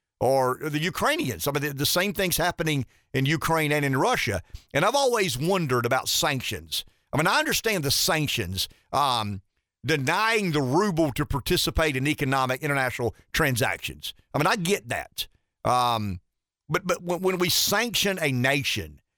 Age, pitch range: 50-69, 125-165 Hz